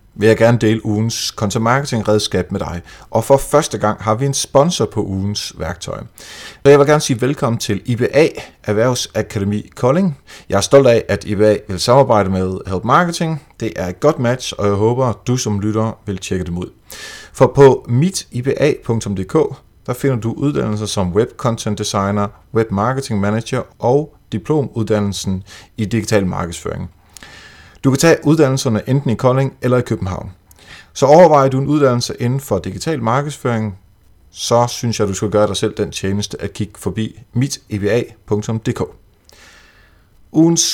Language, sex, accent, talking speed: Danish, male, native, 160 wpm